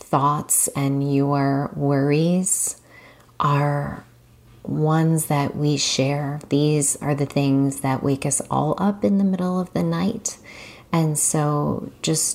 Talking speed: 130 wpm